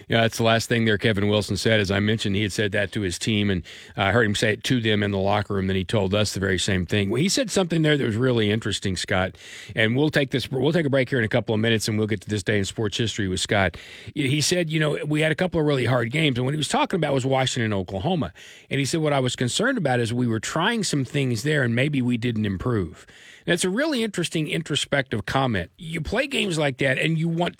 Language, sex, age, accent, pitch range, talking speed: English, male, 40-59, American, 110-150 Hz, 290 wpm